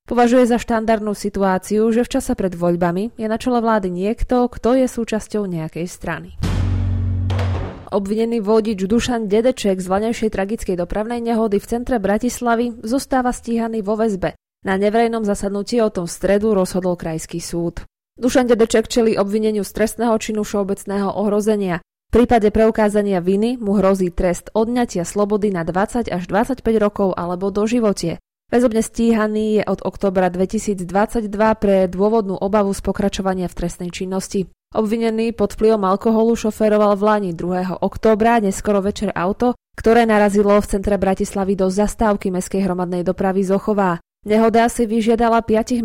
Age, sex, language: 20-39, female, Slovak